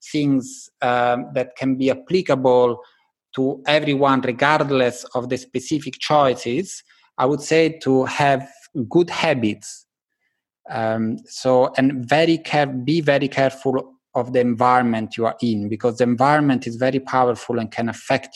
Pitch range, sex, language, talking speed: 120-135 Hz, male, English, 140 wpm